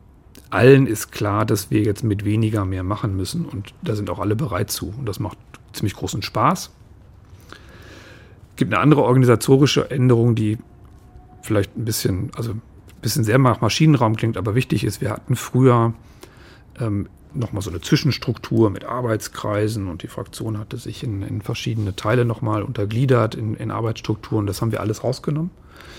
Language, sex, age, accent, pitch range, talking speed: German, male, 40-59, German, 105-125 Hz, 175 wpm